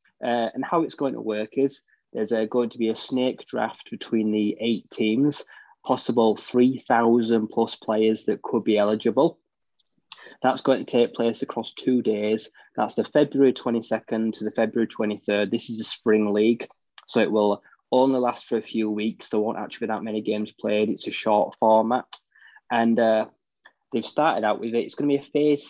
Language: English